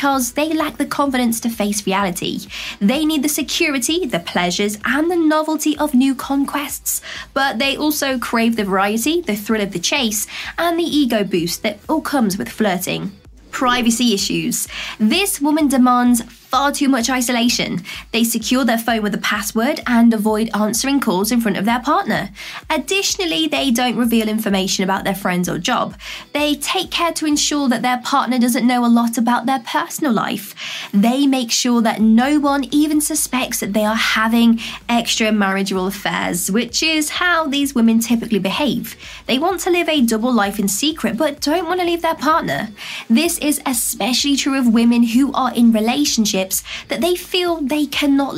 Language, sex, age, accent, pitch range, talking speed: English, female, 20-39, British, 220-295 Hz, 175 wpm